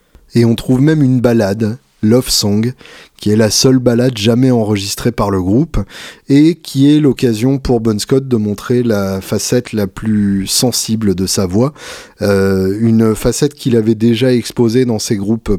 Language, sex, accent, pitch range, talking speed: French, male, French, 100-125 Hz, 175 wpm